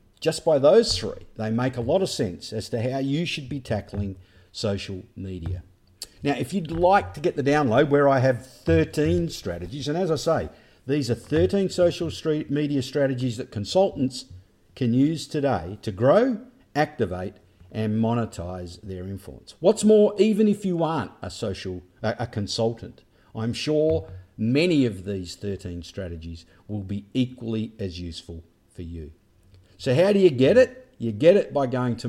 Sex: male